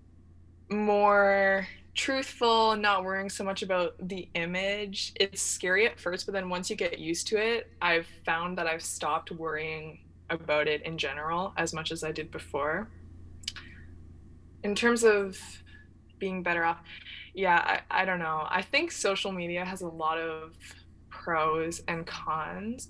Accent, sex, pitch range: American, female, 155-200 Hz